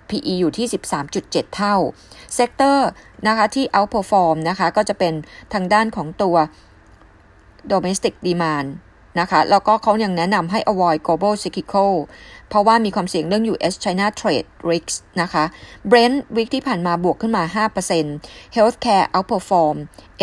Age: 20-39